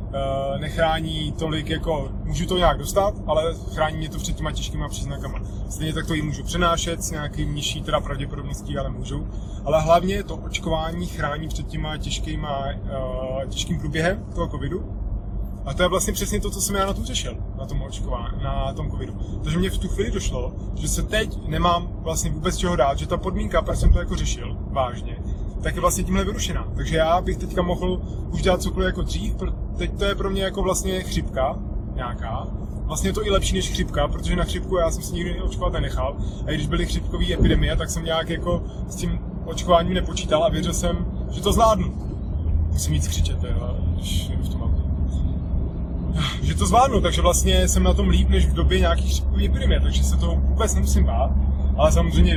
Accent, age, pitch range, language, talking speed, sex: native, 20-39, 70-105 Hz, Czech, 190 wpm, male